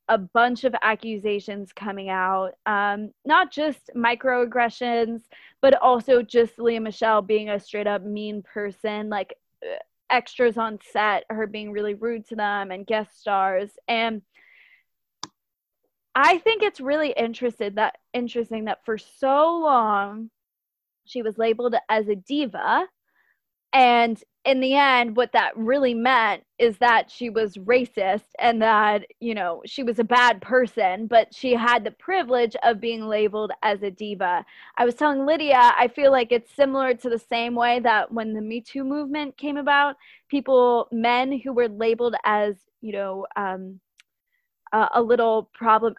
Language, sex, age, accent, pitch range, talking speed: English, female, 20-39, American, 215-255 Hz, 150 wpm